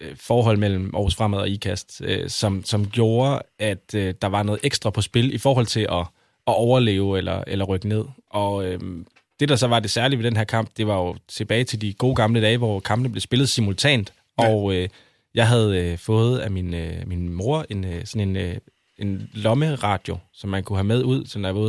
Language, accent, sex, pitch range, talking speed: Danish, native, male, 100-120 Hz, 220 wpm